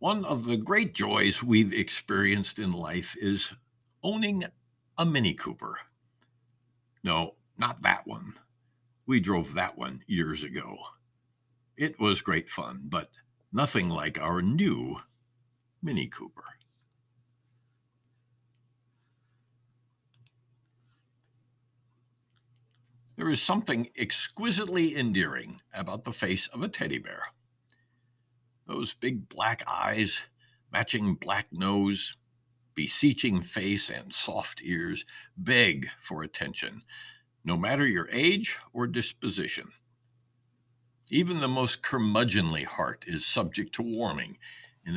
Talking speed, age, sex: 105 wpm, 60-79, male